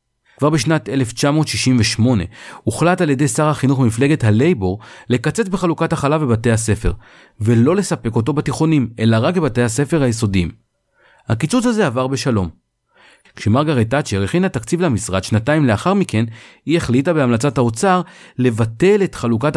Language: Hebrew